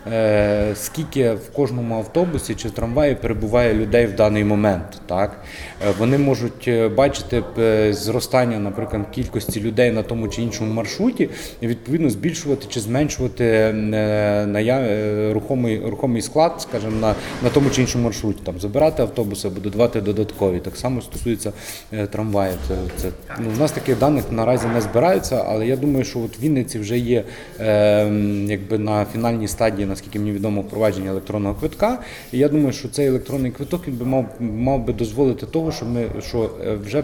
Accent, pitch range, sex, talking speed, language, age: native, 105-130 Hz, male, 155 wpm, Ukrainian, 30-49